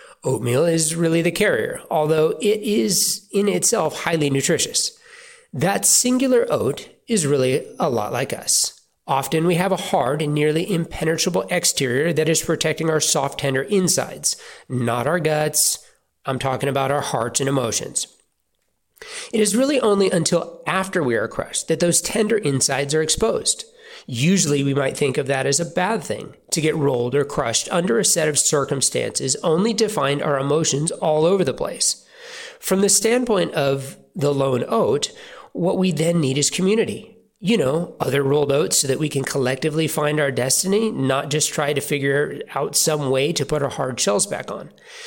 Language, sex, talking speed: English, male, 175 wpm